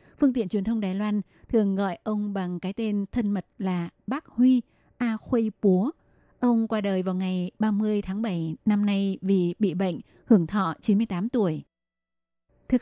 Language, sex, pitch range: Vietnamese, female, 190-225 Hz